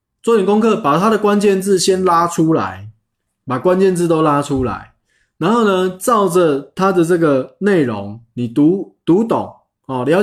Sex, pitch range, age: male, 115-185 Hz, 20-39